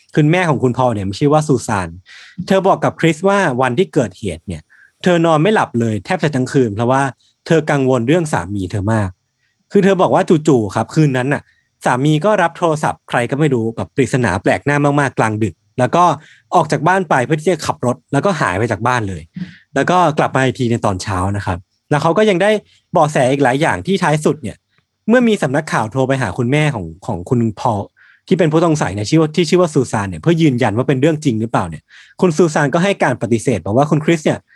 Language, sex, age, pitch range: Thai, male, 20-39, 115-165 Hz